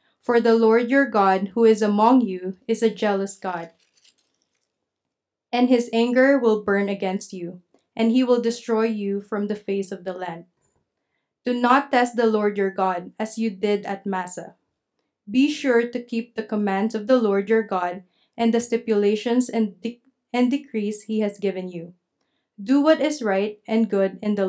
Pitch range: 195-235 Hz